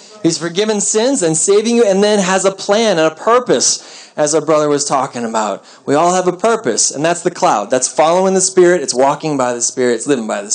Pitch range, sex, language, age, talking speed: 170-215 Hz, male, English, 30-49, 240 wpm